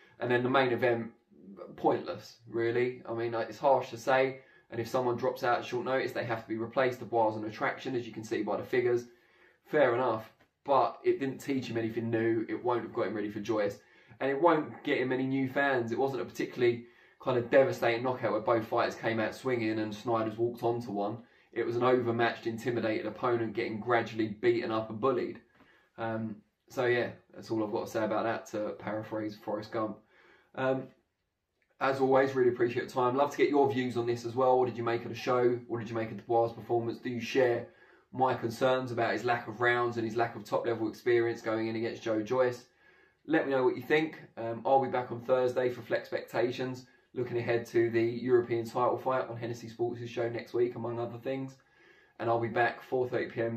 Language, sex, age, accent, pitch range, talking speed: English, male, 20-39, British, 115-130 Hz, 220 wpm